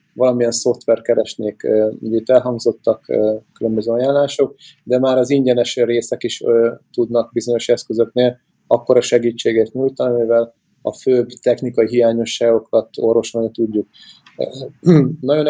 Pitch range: 115-130 Hz